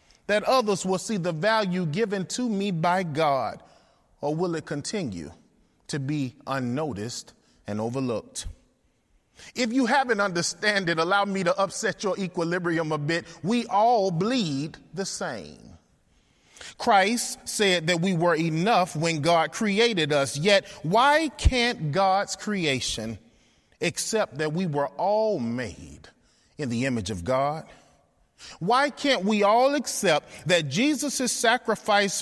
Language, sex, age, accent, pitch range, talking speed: English, male, 30-49, American, 155-230 Hz, 135 wpm